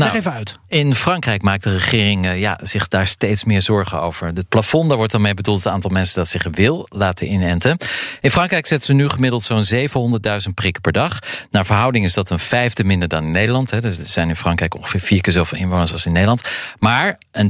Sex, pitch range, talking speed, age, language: male, 95-125 Hz, 225 wpm, 40-59, Dutch